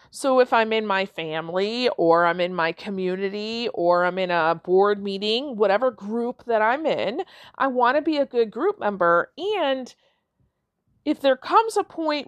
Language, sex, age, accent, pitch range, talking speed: English, female, 40-59, American, 205-285 Hz, 175 wpm